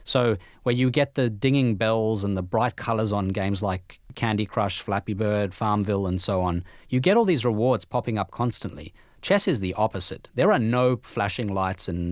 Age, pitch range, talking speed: 30-49, 95-115 Hz, 200 wpm